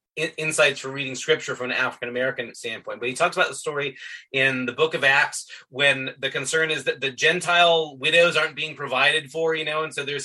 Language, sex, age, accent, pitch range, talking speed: English, male, 30-49, American, 140-165 Hz, 210 wpm